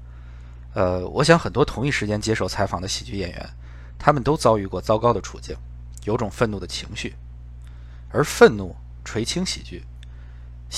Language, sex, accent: Chinese, male, native